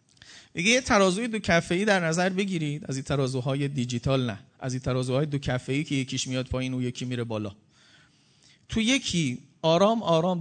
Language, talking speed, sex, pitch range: Persian, 190 wpm, male, 130-175 Hz